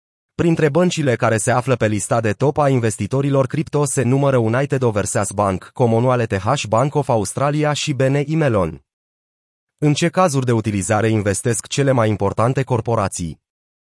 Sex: male